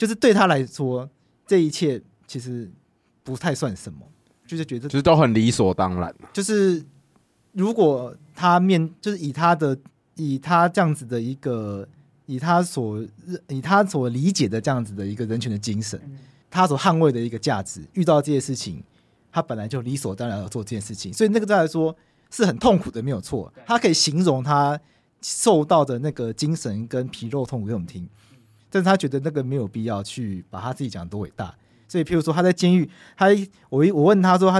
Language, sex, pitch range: Chinese, male, 115-165 Hz